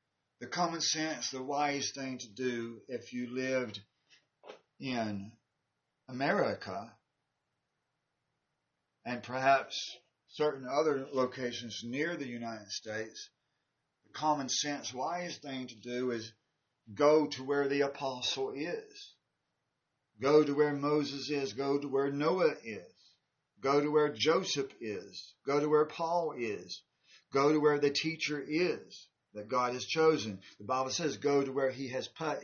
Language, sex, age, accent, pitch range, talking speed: English, male, 40-59, American, 120-150 Hz, 140 wpm